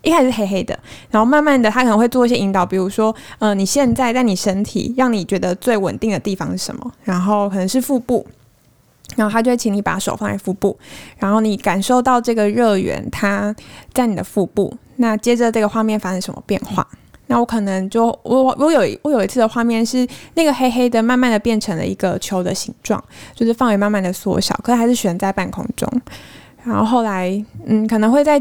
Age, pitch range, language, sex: 20-39, 205-245 Hz, Chinese, female